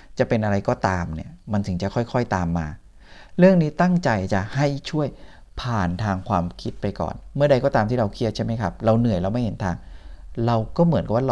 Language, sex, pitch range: Thai, male, 90-120 Hz